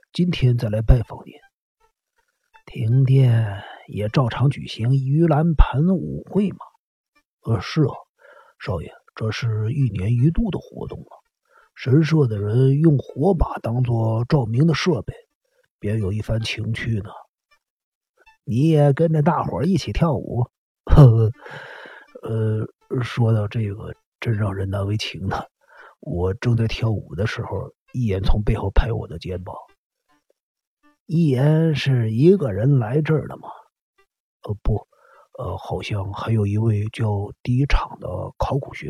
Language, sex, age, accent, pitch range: Chinese, male, 50-69, native, 110-150 Hz